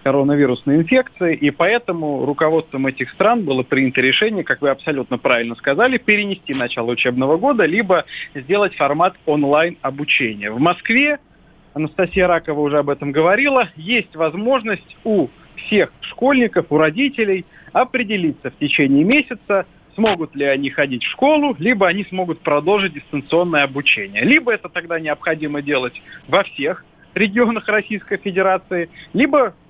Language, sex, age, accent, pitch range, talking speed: Russian, male, 40-59, native, 145-210 Hz, 130 wpm